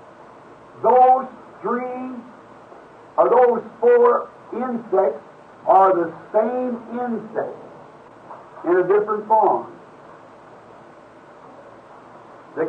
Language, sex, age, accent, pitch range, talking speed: English, male, 60-79, American, 205-270 Hz, 70 wpm